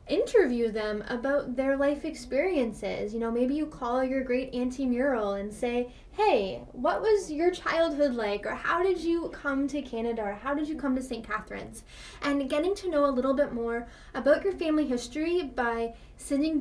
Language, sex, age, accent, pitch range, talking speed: English, female, 10-29, American, 235-285 Hz, 190 wpm